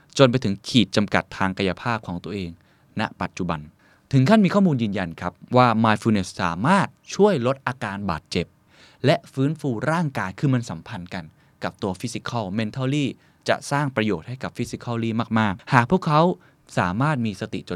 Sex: male